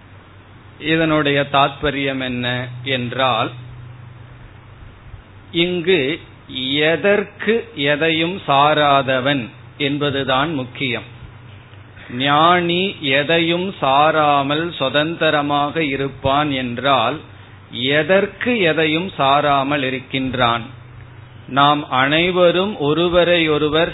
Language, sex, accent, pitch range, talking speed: Tamil, male, native, 125-155 Hz, 60 wpm